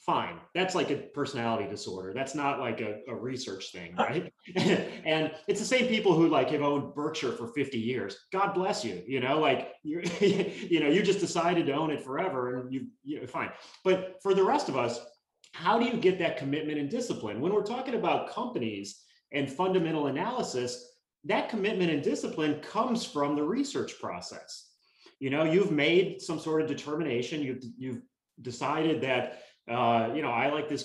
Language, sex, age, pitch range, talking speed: English, male, 30-49, 125-175 Hz, 185 wpm